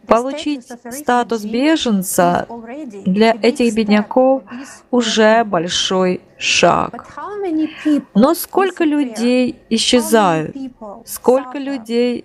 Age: 30-49